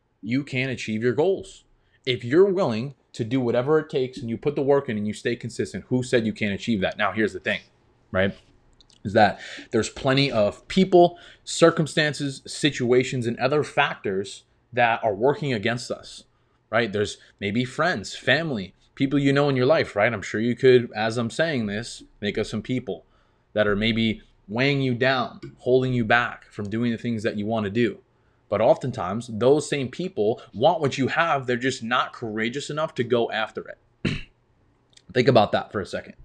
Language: English